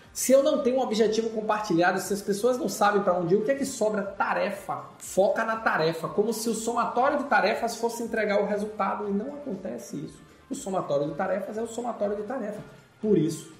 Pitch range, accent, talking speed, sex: 155-215 Hz, Brazilian, 215 wpm, male